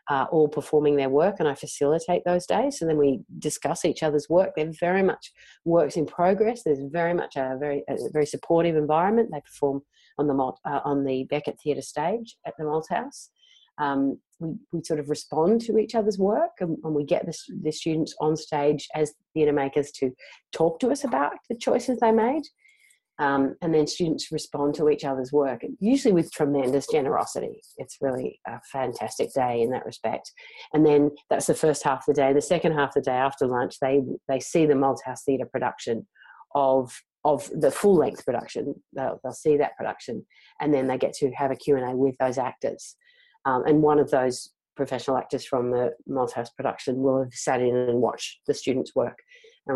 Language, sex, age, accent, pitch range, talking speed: English, female, 40-59, Australian, 135-175 Hz, 200 wpm